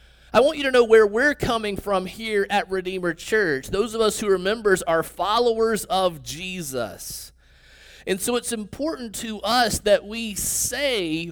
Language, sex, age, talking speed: English, male, 30-49, 170 wpm